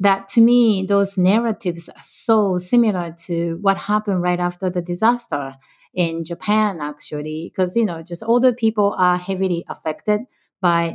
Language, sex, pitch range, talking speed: English, female, 170-210 Hz, 160 wpm